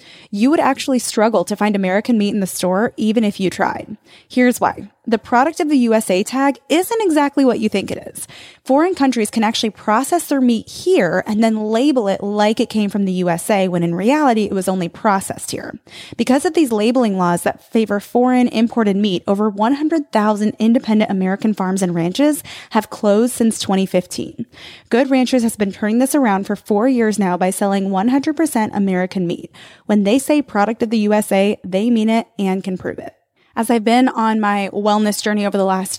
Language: English